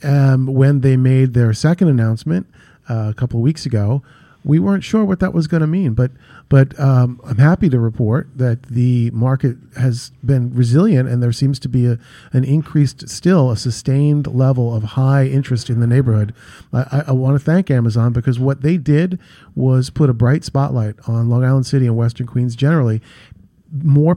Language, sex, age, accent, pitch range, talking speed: English, male, 40-59, American, 120-145 Hz, 195 wpm